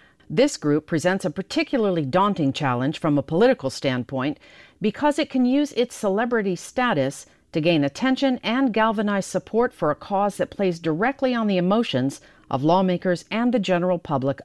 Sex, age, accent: female, 50-69, American